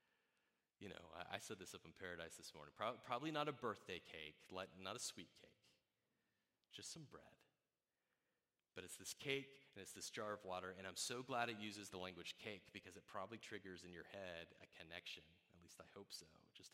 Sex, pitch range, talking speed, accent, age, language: male, 90-125 Hz, 200 wpm, American, 30-49, English